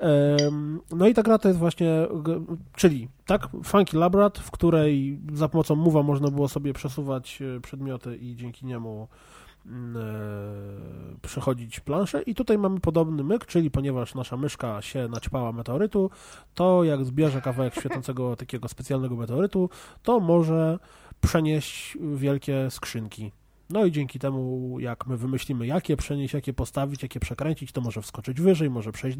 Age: 20-39